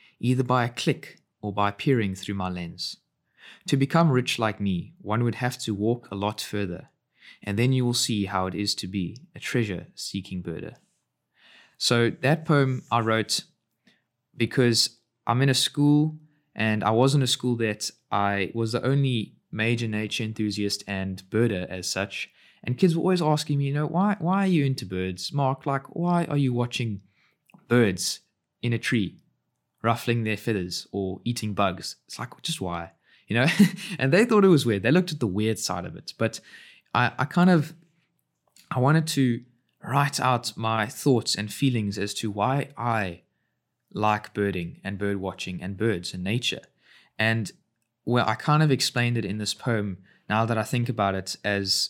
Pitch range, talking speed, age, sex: 100-135 Hz, 185 wpm, 20-39, male